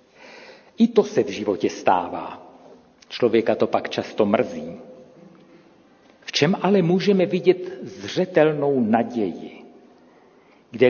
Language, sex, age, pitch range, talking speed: Czech, male, 50-69, 120-180 Hz, 105 wpm